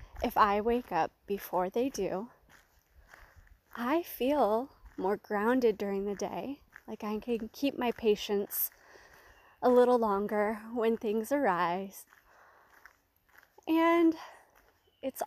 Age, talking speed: 20-39, 110 wpm